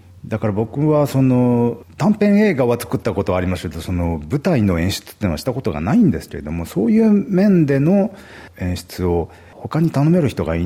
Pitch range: 85-140 Hz